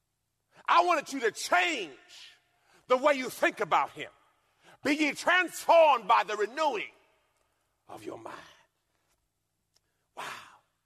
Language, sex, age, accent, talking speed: English, male, 40-59, American, 115 wpm